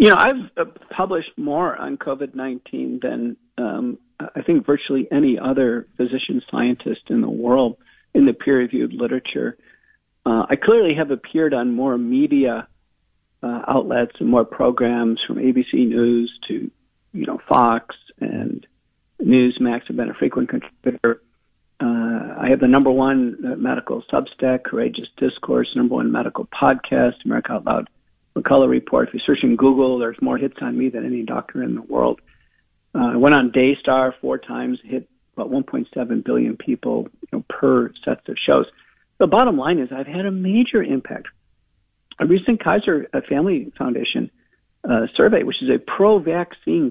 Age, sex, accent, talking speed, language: 50-69, male, American, 160 wpm, English